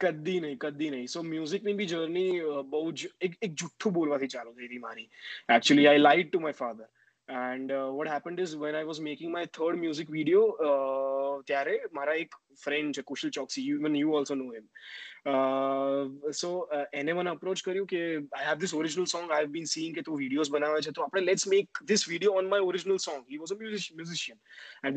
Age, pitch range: 20-39, 140-195 Hz